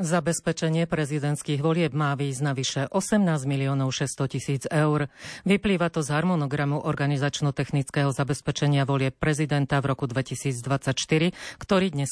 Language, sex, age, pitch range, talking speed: Slovak, female, 40-59, 140-160 Hz, 115 wpm